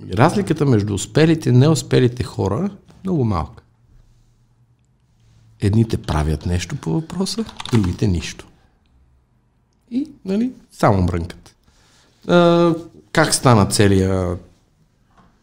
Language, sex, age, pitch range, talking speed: Bulgarian, male, 50-69, 95-150 Hz, 90 wpm